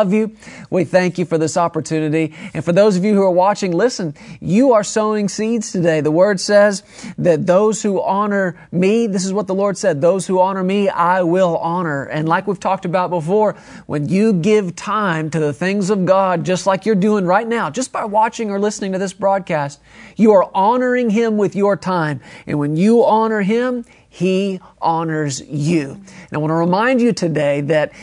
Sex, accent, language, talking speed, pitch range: male, American, English, 200 wpm, 165-210 Hz